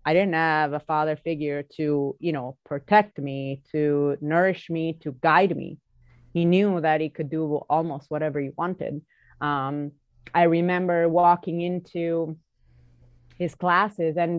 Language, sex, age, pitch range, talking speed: English, female, 30-49, 140-175 Hz, 145 wpm